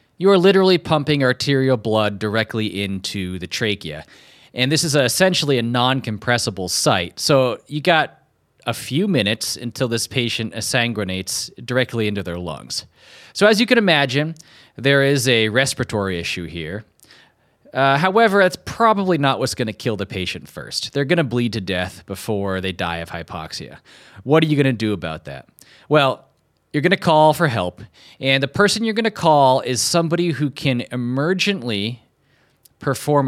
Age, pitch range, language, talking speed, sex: 30-49, 105-150 Hz, English, 170 wpm, male